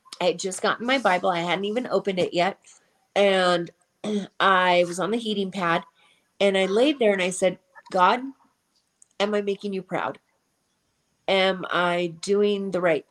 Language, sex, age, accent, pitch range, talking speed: English, female, 30-49, American, 175-205 Hz, 165 wpm